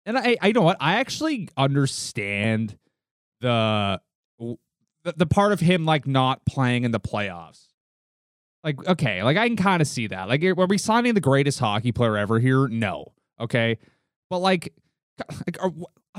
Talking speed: 170 wpm